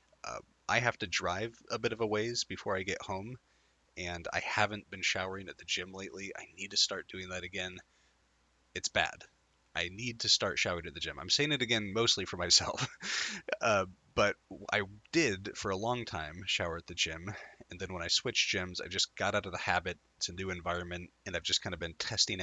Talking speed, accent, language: 220 wpm, American, English